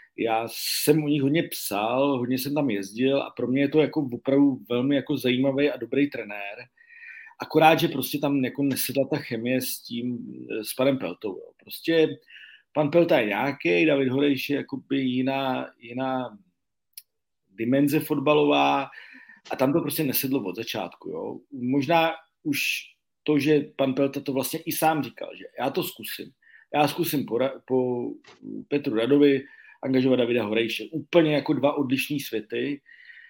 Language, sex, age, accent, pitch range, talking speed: Czech, male, 40-59, native, 125-150 Hz, 155 wpm